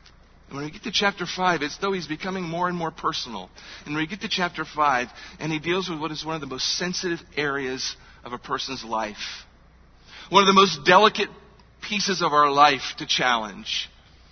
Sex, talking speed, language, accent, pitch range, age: male, 205 wpm, English, American, 145-195 Hz, 50-69